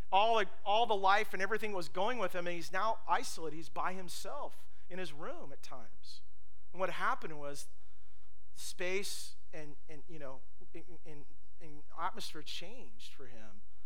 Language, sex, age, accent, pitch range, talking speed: English, male, 40-59, American, 125-175 Hz, 175 wpm